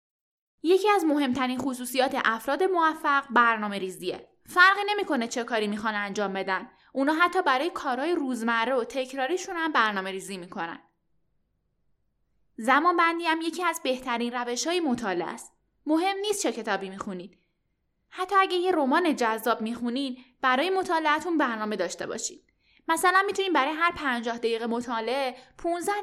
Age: 10-29